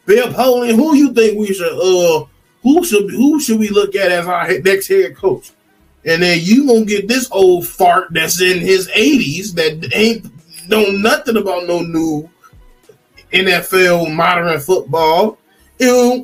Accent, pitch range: American, 165-245 Hz